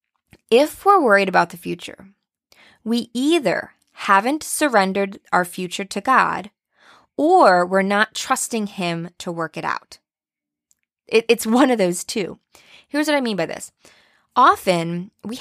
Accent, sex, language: American, female, English